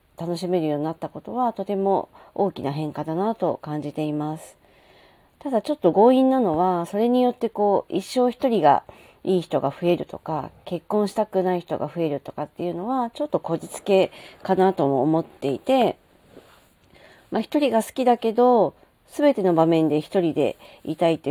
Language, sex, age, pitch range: Japanese, female, 40-59, 155-205 Hz